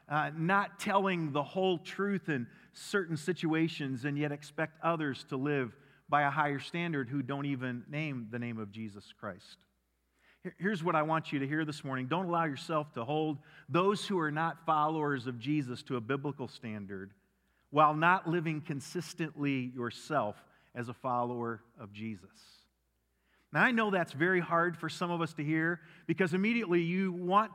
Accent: American